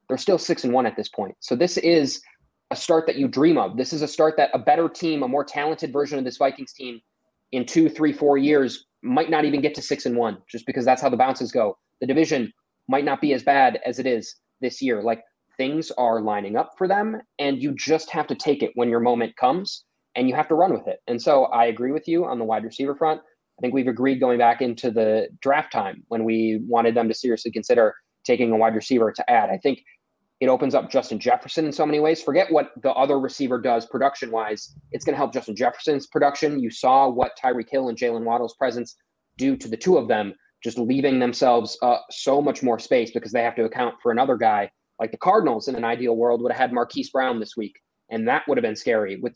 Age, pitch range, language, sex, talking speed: 20-39, 115-145 Hz, English, male, 245 wpm